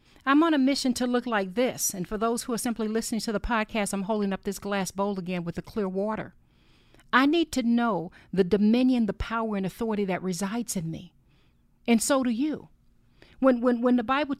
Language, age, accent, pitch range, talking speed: English, 50-69, American, 195-275 Hz, 215 wpm